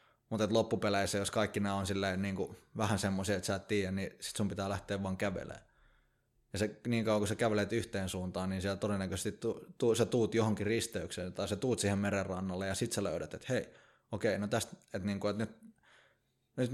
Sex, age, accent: male, 20-39, native